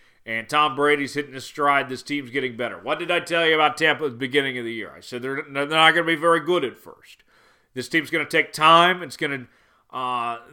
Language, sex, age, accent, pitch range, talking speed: English, male, 40-59, American, 125-155 Hz, 250 wpm